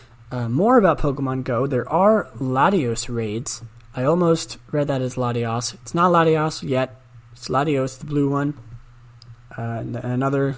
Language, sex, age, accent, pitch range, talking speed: English, male, 20-39, American, 120-150 Hz, 145 wpm